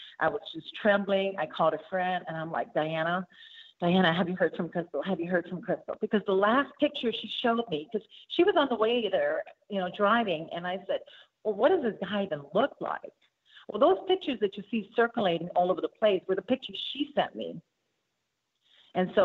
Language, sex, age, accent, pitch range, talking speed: English, female, 40-59, American, 170-275 Hz, 220 wpm